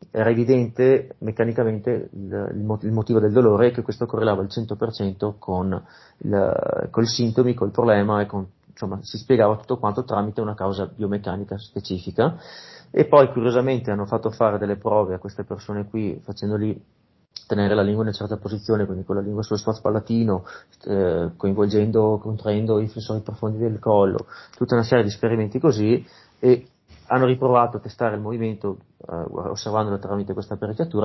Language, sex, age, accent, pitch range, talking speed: Italian, male, 30-49, native, 100-115 Hz, 160 wpm